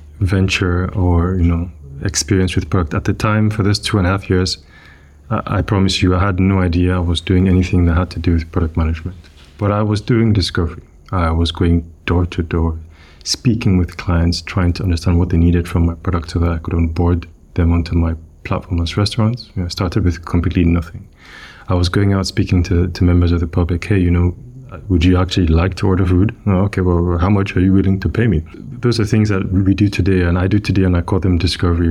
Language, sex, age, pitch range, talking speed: English, male, 30-49, 85-95 Hz, 230 wpm